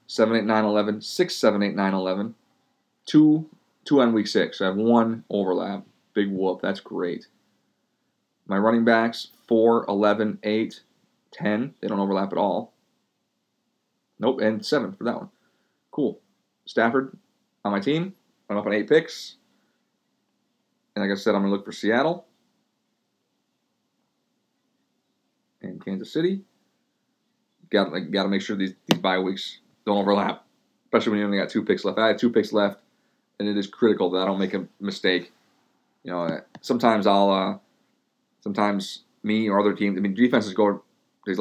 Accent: American